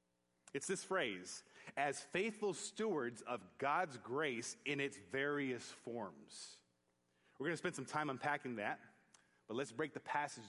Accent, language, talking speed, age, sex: American, English, 150 wpm, 30-49, male